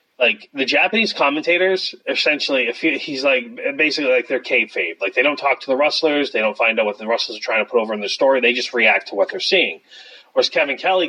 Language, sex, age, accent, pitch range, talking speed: English, male, 30-49, American, 125-195 Hz, 240 wpm